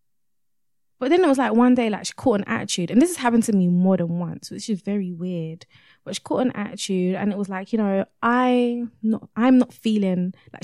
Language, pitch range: English, 185-230 Hz